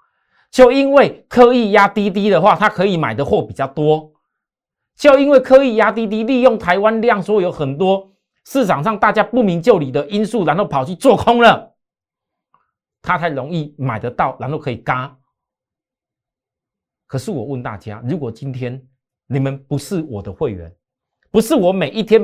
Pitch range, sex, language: 115-185 Hz, male, Chinese